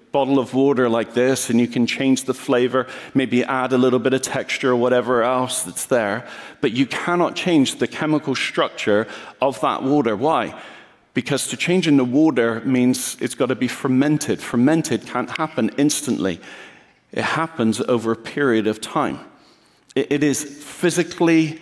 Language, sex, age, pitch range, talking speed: English, male, 40-59, 110-135 Hz, 165 wpm